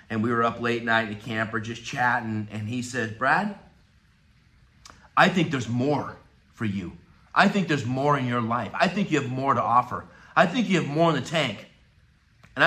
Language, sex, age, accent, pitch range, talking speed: English, male, 40-59, American, 125-185 Hz, 210 wpm